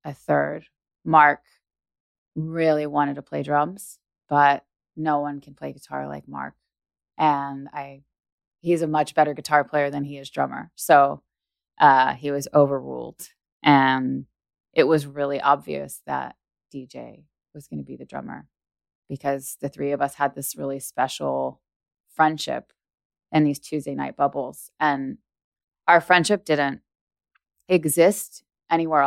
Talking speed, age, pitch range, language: 140 wpm, 20-39, 130-150 Hz, English